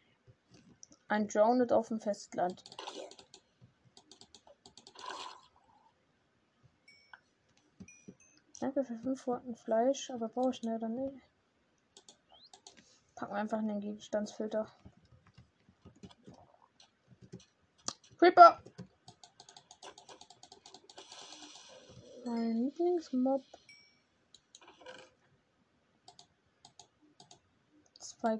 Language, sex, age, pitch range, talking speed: German, female, 20-39, 225-290 Hz, 55 wpm